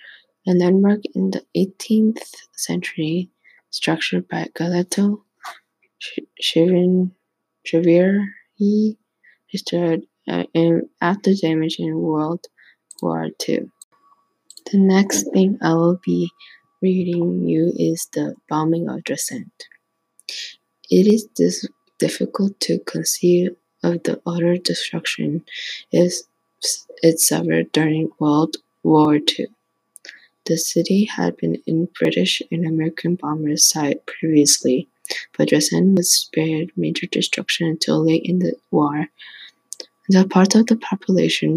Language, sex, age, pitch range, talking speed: English, female, 20-39, 155-185 Hz, 110 wpm